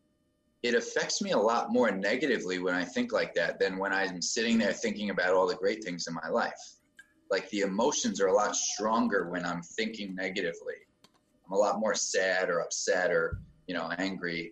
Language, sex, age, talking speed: English, male, 20-39, 200 wpm